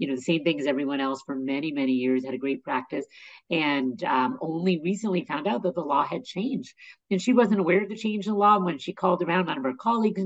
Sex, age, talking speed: female, 50-69, 255 wpm